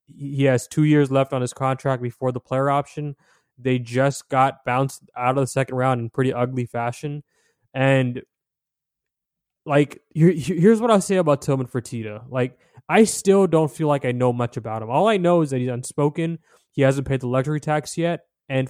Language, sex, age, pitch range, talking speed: English, male, 20-39, 125-150 Hz, 195 wpm